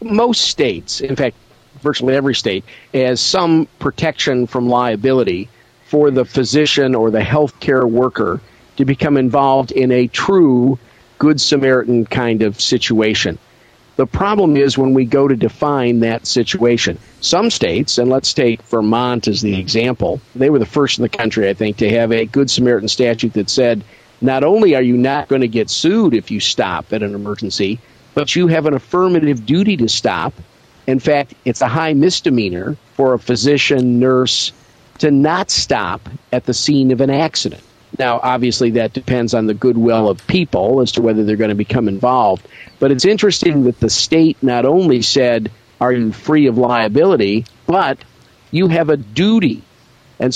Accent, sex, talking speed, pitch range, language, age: American, male, 175 wpm, 115-140 Hz, English, 50-69